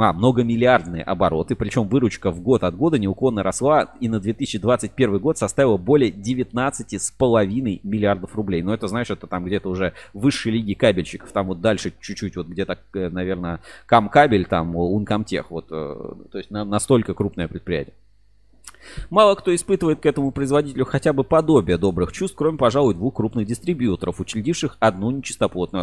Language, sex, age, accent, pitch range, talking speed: Russian, male, 30-49, native, 95-135 Hz, 150 wpm